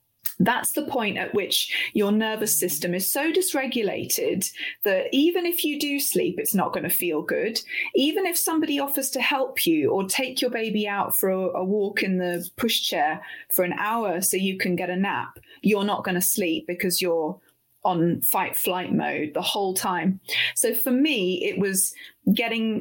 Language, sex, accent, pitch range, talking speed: English, female, British, 185-230 Hz, 185 wpm